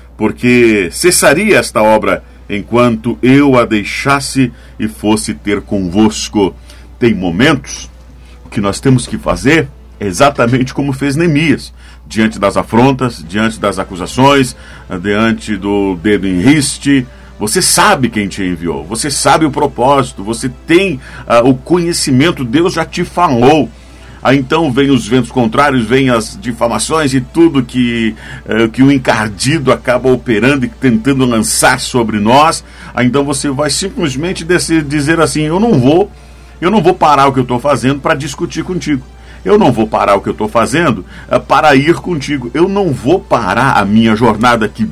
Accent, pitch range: Brazilian, 110-150 Hz